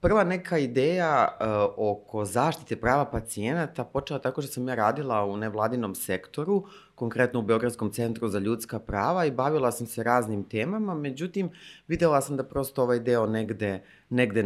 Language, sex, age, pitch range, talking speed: English, female, 30-49, 110-140 Hz, 160 wpm